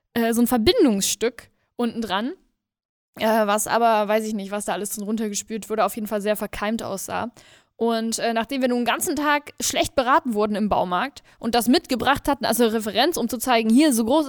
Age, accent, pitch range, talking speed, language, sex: 10-29, German, 215-250 Hz, 195 wpm, German, female